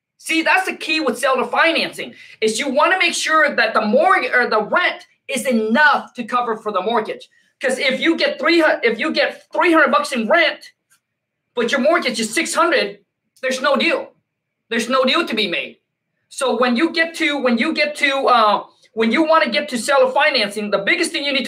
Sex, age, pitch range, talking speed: male, 20-39, 225-305 Hz, 215 wpm